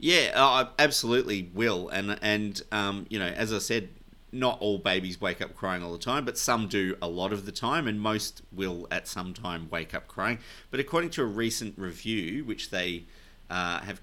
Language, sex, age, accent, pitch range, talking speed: English, male, 30-49, Australian, 95-115 Hz, 205 wpm